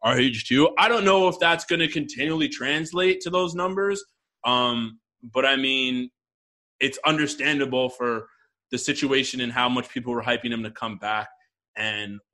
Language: English